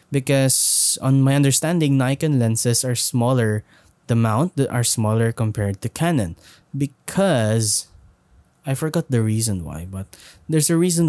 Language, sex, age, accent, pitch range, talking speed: Filipino, male, 20-39, native, 105-140 Hz, 140 wpm